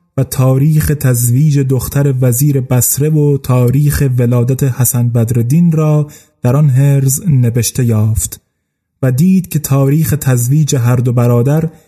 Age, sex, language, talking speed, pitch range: 30-49, male, Persian, 120 wpm, 130-155 Hz